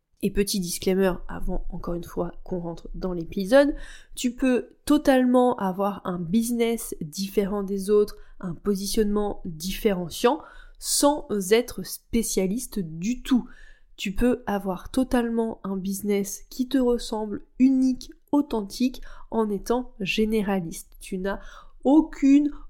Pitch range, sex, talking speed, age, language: 195-245 Hz, female, 120 wpm, 20-39, French